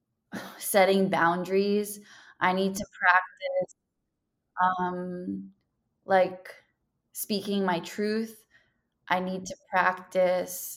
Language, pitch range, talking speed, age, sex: English, 180-205 Hz, 85 wpm, 20-39, female